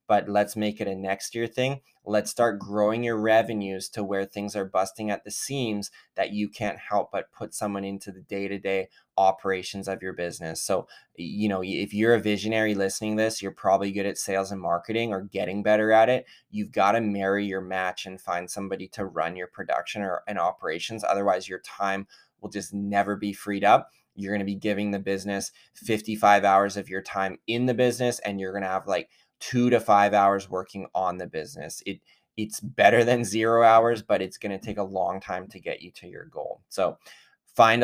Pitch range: 95-110 Hz